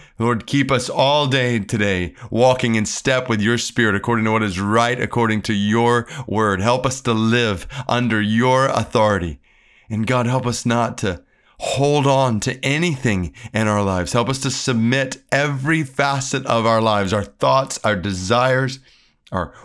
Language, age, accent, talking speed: English, 30-49, American, 170 wpm